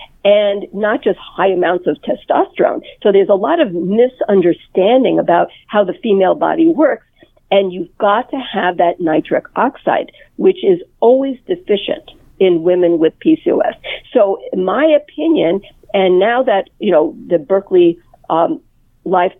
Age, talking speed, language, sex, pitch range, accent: 50-69, 145 wpm, English, female, 190-295 Hz, American